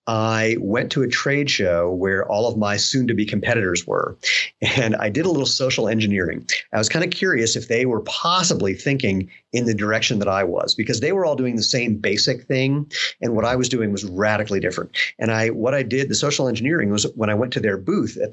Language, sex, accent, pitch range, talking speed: English, male, American, 105-130 Hz, 235 wpm